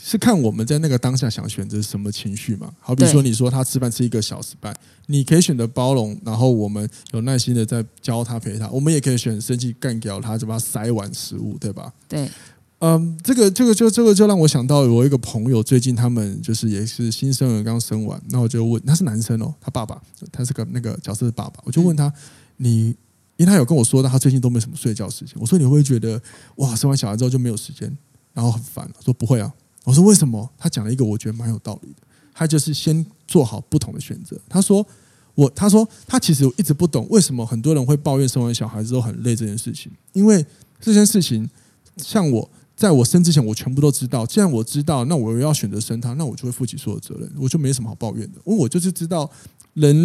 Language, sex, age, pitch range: Chinese, male, 20-39, 115-155 Hz